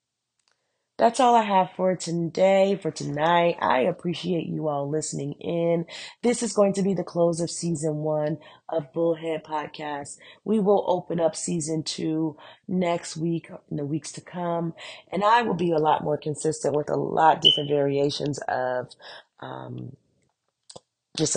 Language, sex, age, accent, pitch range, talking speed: English, female, 30-49, American, 145-170 Hz, 160 wpm